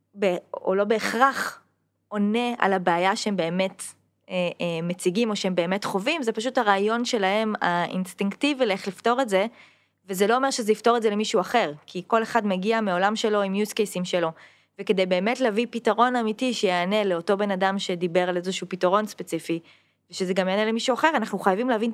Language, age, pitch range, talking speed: Hebrew, 20-39, 185-230 Hz, 180 wpm